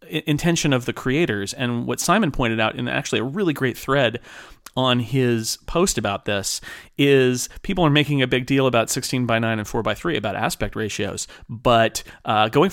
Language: English